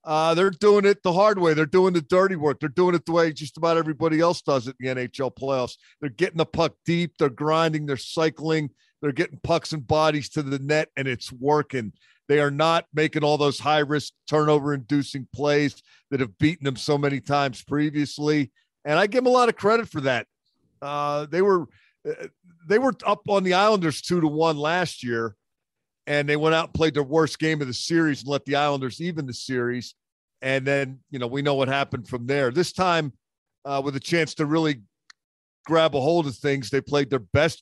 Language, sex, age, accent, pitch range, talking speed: English, male, 50-69, American, 135-165 Hz, 210 wpm